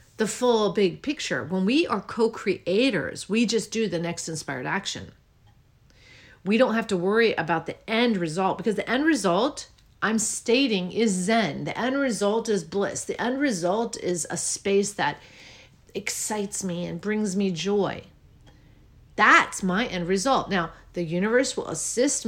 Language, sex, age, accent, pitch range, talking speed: English, female, 40-59, American, 175-220 Hz, 160 wpm